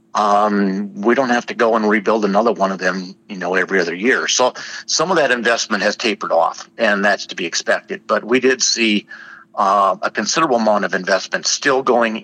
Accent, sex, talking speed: American, male, 205 wpm